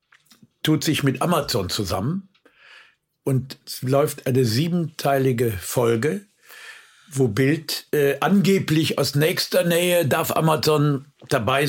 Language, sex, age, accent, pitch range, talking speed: German, male, 60-79, German, 125-155 Hz, 105 wpm